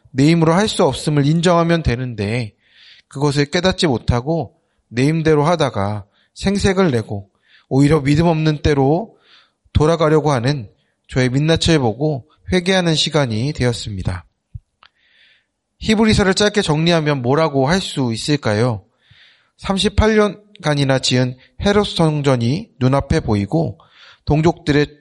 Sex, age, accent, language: male, 30-49, native, Korean